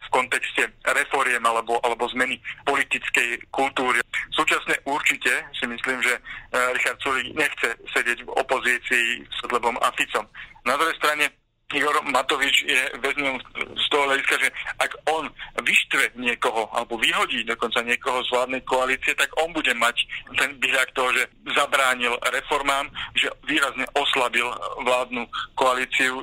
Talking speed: 135 wpm